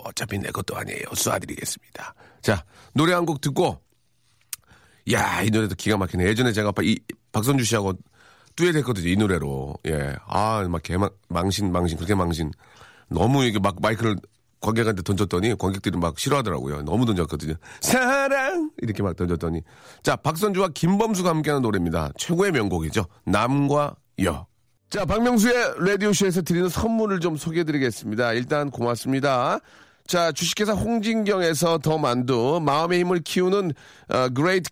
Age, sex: 40-59, male